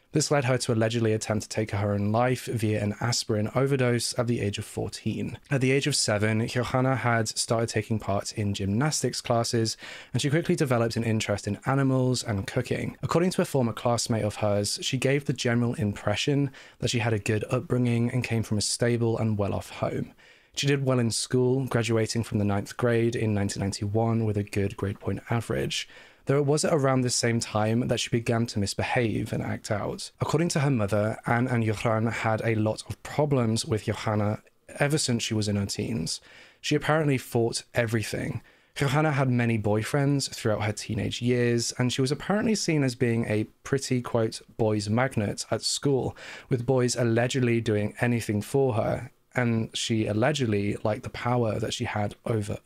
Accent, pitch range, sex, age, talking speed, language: British, 110-130 Hz, male, 20-39, 190 wpm, English